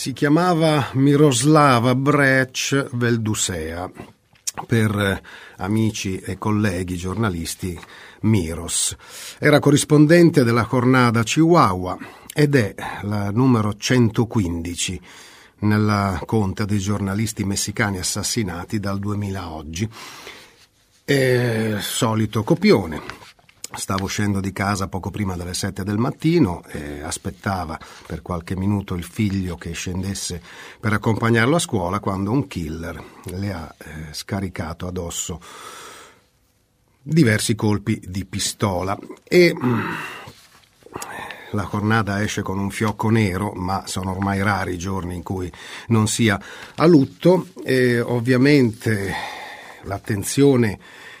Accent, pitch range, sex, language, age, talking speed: native, 95-120 Hz, male, Italian, 40-59, 105 wpm